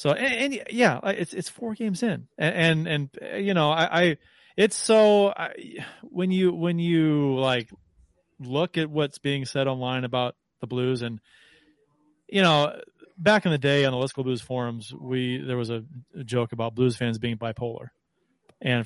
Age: 30-49